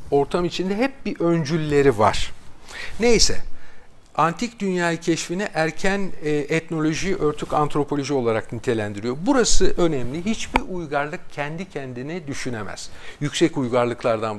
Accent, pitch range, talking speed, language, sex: native, 130-185 Hz, 105 wpm, Turkish, male